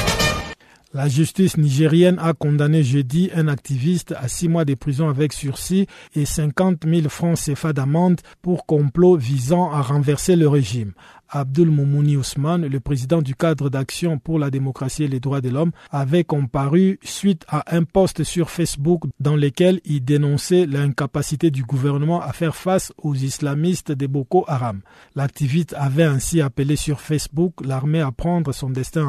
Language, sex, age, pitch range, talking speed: French, male, 50-69, 140-170 Hz, 160 wpm